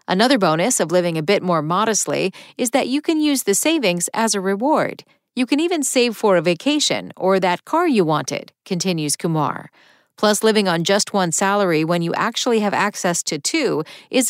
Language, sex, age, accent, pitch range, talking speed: English, female, 40-59, American, 175-240 Hz, 195 wpm